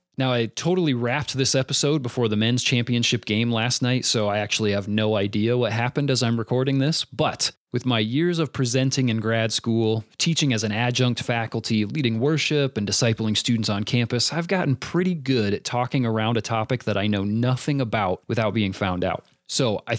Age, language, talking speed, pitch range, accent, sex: 30-49, English, 200 wpm, 110-140 Hz, American, male